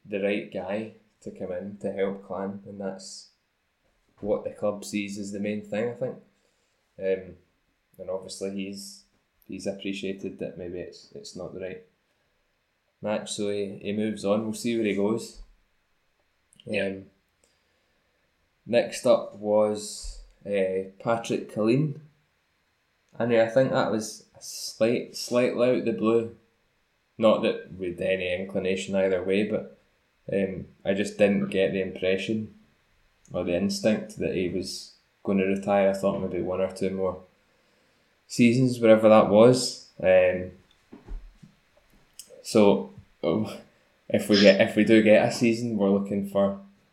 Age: 10-29